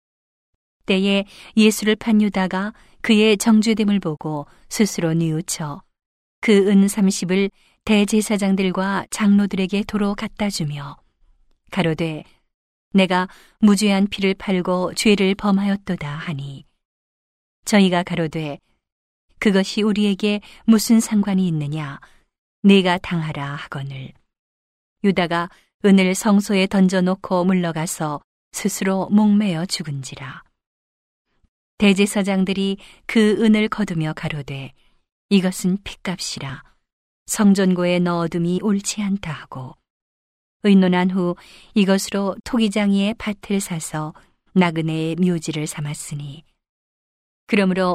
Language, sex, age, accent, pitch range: Korean, female, 40-59, native, 160-205 Hz